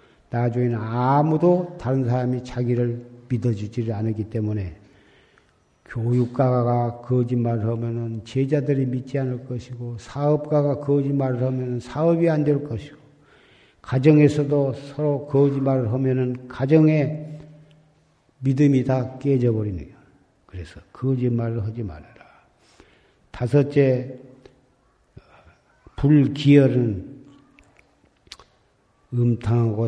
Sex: male